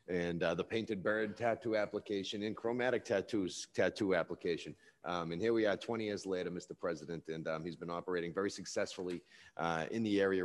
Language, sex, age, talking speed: English, male, 40-59, 190 wpm